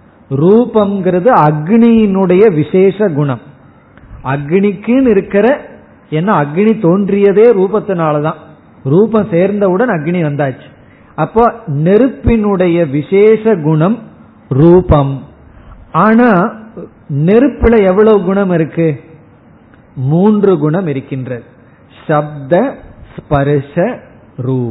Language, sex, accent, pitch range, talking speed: Tamil, male, native, 150-210 Hz, 65 wpm